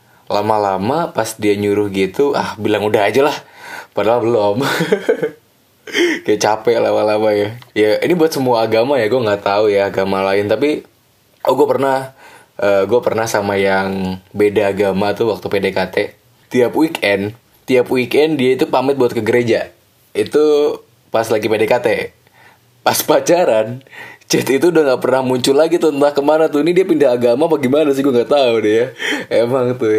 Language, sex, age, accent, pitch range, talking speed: Indonesian, male, 20-39, native, 105-145 Hz, 160 wpm